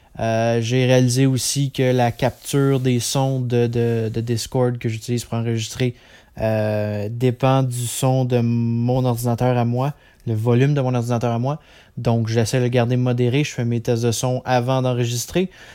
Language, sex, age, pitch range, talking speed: English, male, 20-39, 115-140 Hz, 180 wpm